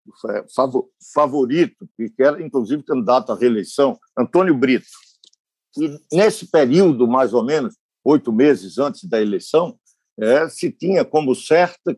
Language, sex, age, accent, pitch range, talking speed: Portuguese, male, 60-79, Brazilian, 130-185 Hz, 115 wpm